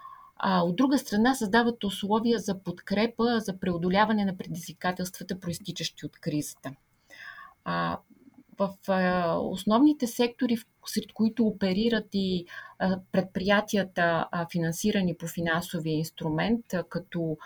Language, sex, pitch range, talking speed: Bulgarian, female, 175-220 Hz, 95 wpm